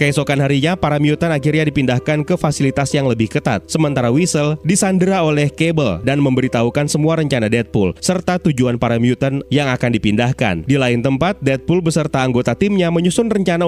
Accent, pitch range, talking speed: native, 125-170 Hz, 160 wpm